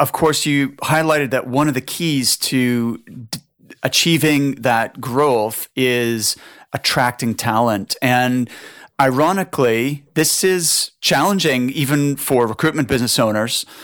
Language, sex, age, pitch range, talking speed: English, male, 30-49, 120-145 Hz, 115 wpm